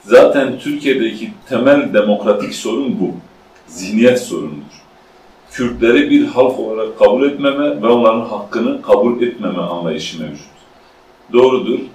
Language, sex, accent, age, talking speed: Turkish, male, native, 40-59, 110 wpm